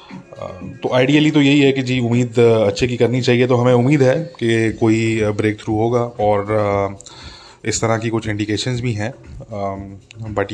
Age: 20-39